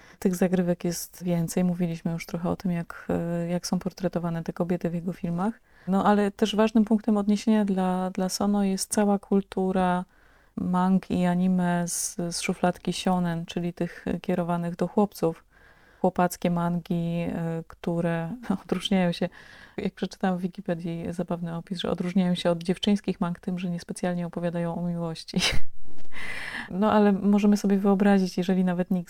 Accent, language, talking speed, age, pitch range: native, Polish, 155 wpm, 30-49, 175-190 Hz